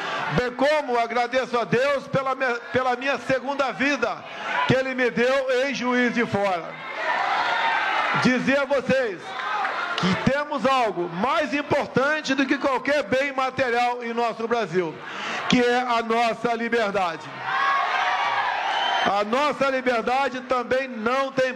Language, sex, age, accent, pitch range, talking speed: Portuguese, male, 50-69, Brazilian, 230-275 Hz, 125 wpm